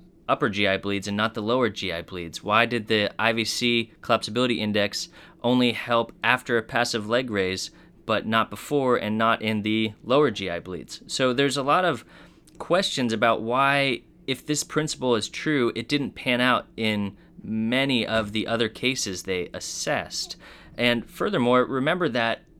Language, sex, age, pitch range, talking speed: English, male, 30-49, 105-130 Hz, 160 wpm